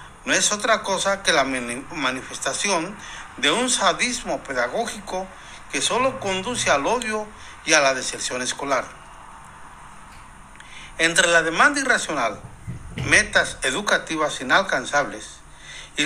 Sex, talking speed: male, 110 wpm